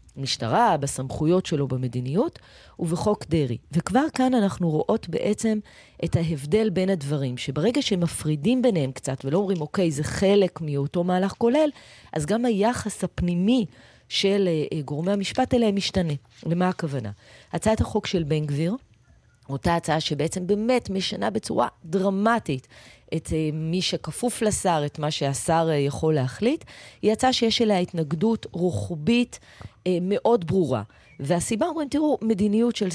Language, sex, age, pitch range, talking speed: Hebrew, female, 30-49, 150-215 Hz, 130 wpm